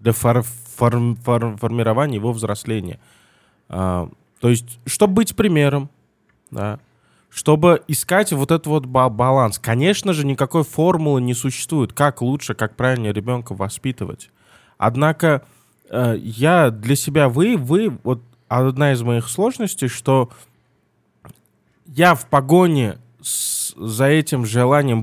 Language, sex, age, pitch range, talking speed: Russian, male, 20-39, 115-155 Hz, 115 wpm